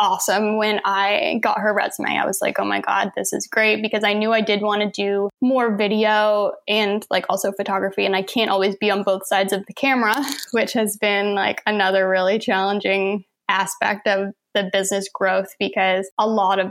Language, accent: English, American